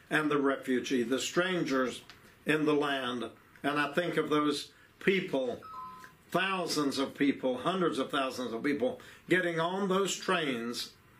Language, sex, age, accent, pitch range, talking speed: English, male, 60-79, American, 140-170 Hz, 140 wpm